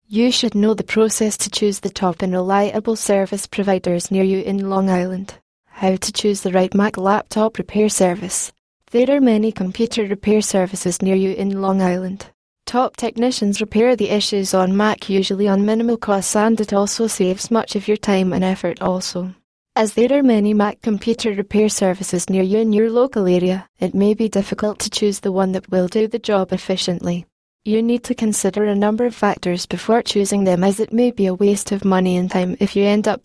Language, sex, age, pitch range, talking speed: English, female, 10-29, 190-215 Hz, 205 wpm